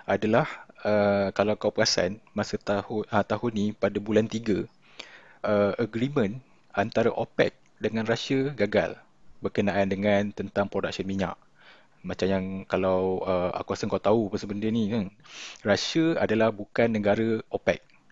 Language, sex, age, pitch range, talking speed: Malay, male, 20-39, 100-120 Hz, 140 wpm